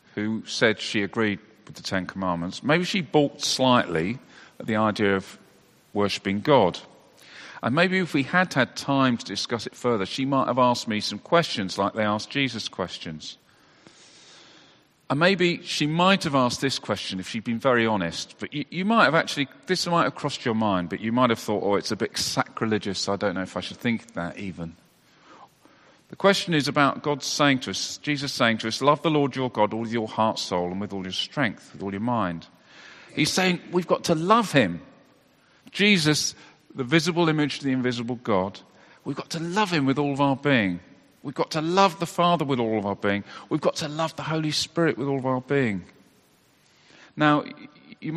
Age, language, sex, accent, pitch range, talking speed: 40-59, English, male, British, 105-150 Hz, 205 wpm